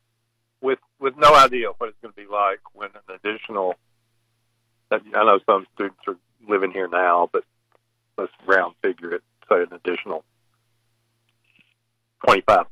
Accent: American